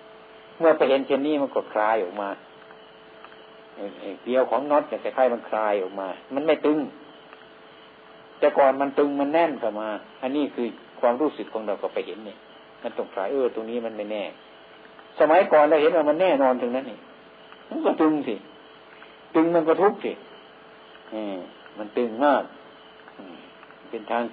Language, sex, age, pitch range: Thai, male, 60-79, 110-150 Hz